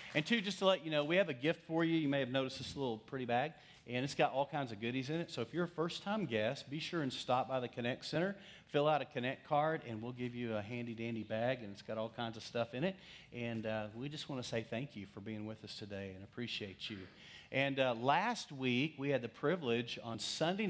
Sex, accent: male, American